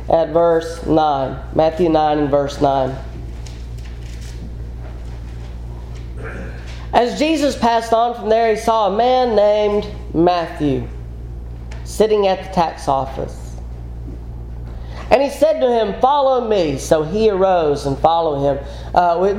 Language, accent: English, American